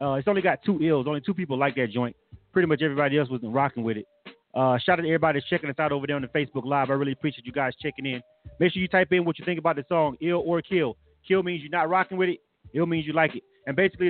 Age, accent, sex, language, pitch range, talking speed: 30-49, American, male, English, 135-180 Hz, 300 wpm